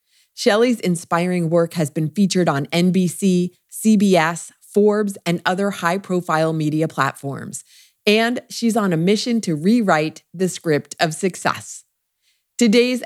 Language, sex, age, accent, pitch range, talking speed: English, female, 30-49, American, 160-210 Hz, 125 wpm